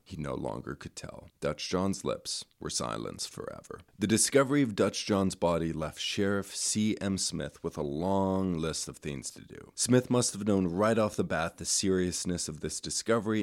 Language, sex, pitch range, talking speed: English, male, 85-105 Hz, 190 wpm